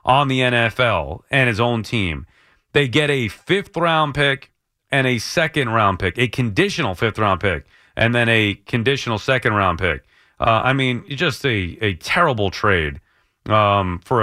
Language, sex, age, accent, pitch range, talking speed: English, male, 30-49, American, 110-150 Hz, 150 wpm